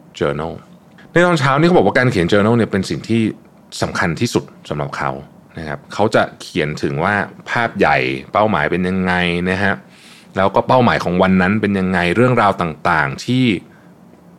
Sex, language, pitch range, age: male, Thai, 90-115 Hz, 20-39